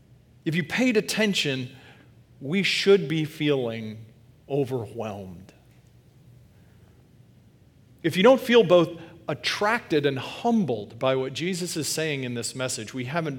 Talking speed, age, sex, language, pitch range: 120 wpm, 40-59, male, English, 125-170 Hz